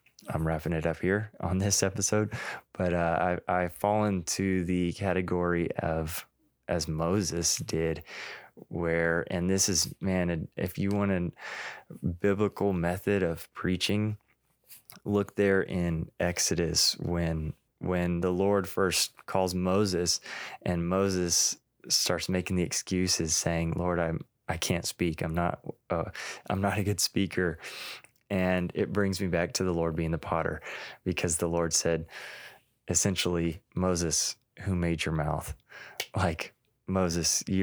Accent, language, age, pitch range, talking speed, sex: American, English, 20-39, 85-95 Hz, 140 wpm, male